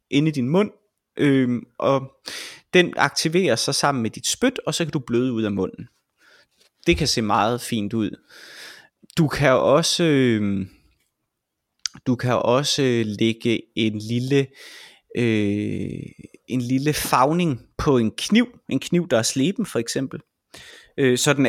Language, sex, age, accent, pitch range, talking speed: Danish, male, 20-39, native, 120-160 Hz, 145 wpm